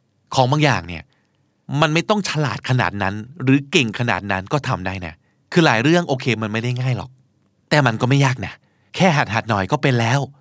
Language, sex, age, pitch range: Thai, male, 20-39, 120-175 Hz